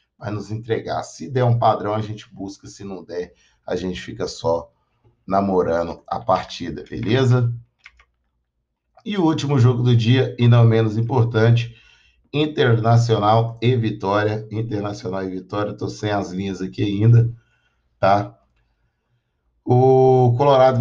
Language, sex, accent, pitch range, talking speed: Portuguese, male, Brazilian, 110-130 Hz, 135 wpm